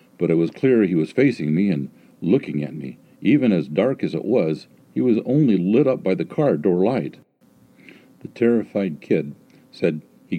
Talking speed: 190 wpm